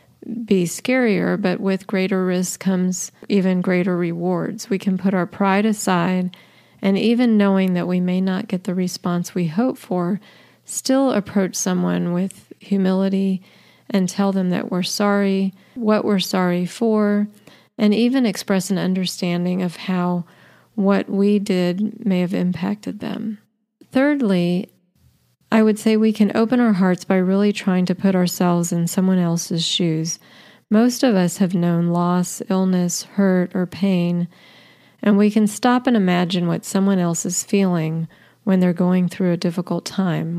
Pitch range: 180-205 Hz